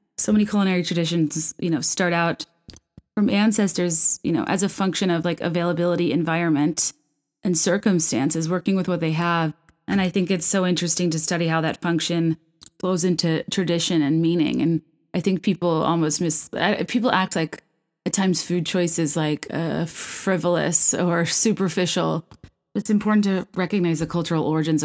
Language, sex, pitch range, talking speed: English, female, 160-190 Hz, 165 wpm